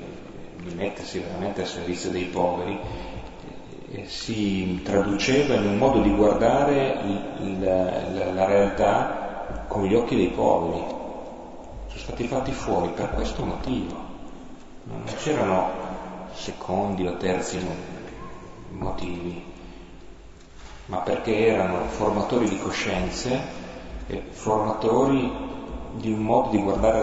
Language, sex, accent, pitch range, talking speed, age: Italian, male, native, 90-105 Hz, 110 wpm, 30-49